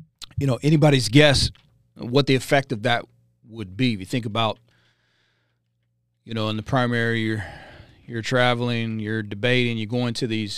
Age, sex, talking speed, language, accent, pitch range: 40-59, male, 165 wpm, English, American, 105-130 Hz